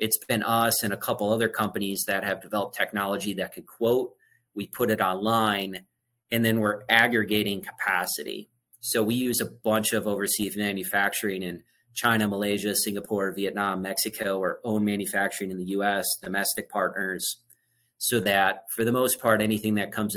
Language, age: English, 30-49